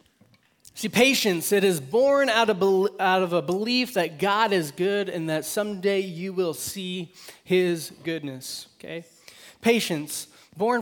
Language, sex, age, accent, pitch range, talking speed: English, male, 20-39, American, 170-215 Hz, 150 wpm